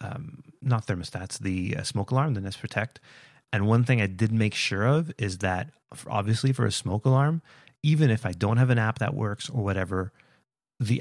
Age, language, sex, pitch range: 30-49, English, male, 95-130 Hz